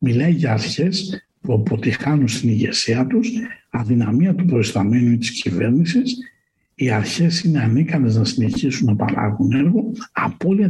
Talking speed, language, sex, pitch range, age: 130 wpm, Greek, male, 115-170 Hz, 60-79